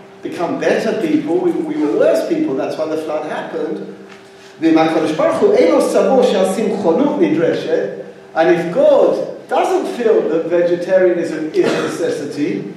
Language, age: English, 50-69